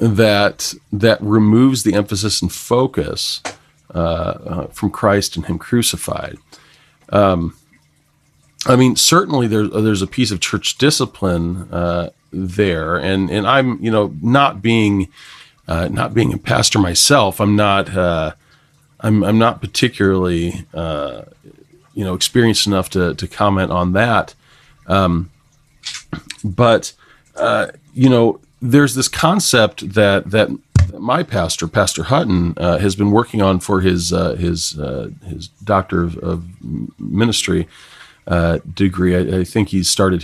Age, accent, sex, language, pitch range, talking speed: 40-59, American, male, English, 90-115 Hz, 140 wpm